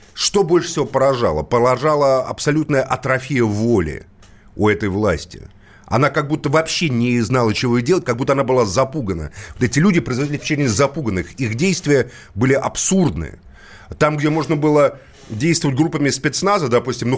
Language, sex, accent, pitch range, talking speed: Russian, male, native, 105-145 Hz, 155 wpm